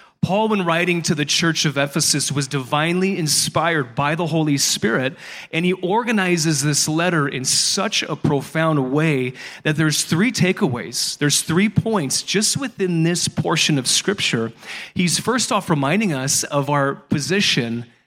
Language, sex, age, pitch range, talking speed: English, male, 30-49, 140-175 Hz, 155 wpm